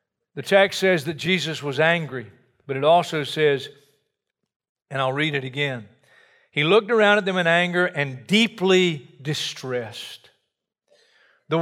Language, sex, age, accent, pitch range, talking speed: English, male, 50-69, American, 135-170 Hz, 140 wpm